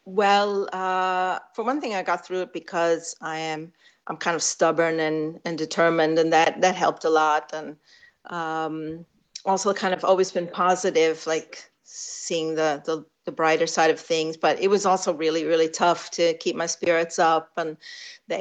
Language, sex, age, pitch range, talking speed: English, female, 50-69, 160-180 Hz, 180 wpm